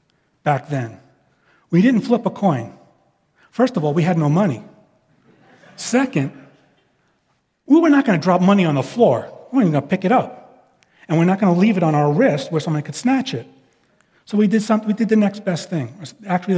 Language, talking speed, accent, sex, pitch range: English, 215 wpm, American, male, 145-190 Hz